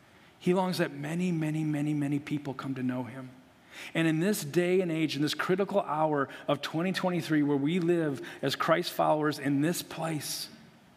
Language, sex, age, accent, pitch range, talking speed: English, male, 40-59, American, 165-225 Hz, 180 wpm